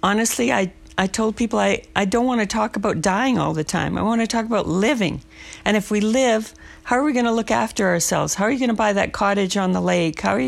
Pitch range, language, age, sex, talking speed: 175-210 Hz, English, 50-69, female, 270 wpm